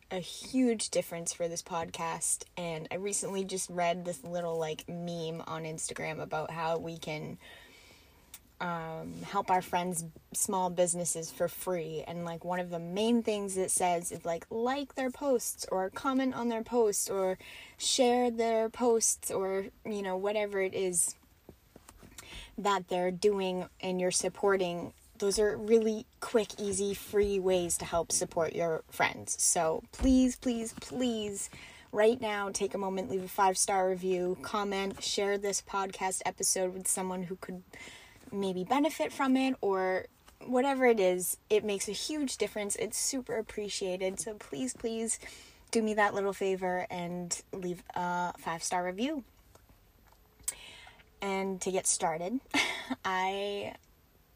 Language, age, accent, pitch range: English, 10-29, American, 180-220 Hz